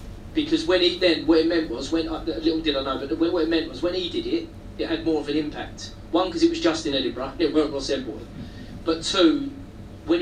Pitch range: 130-160 Hz